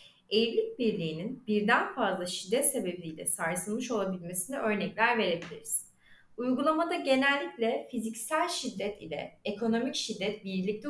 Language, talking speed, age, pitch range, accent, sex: Turkish, 100 wpm, 30-49, 195-265 Hz, native, female